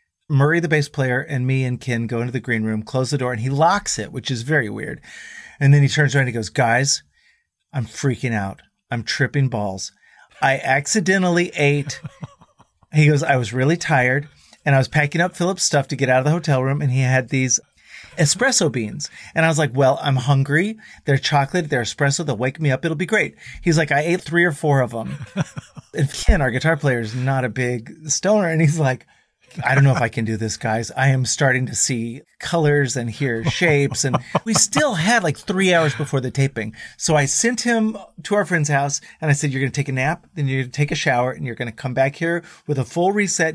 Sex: male